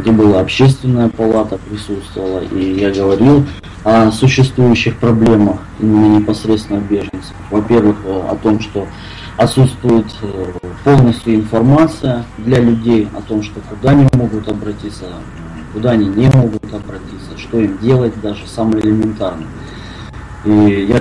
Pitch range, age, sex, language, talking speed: 100-120 Hz, 20-39, male, Russian, 125 wpm